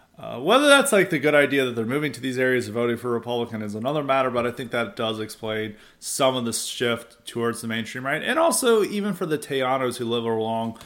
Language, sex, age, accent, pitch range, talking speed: English, male, 30-49, American, 110-160 Hz, 240 wpm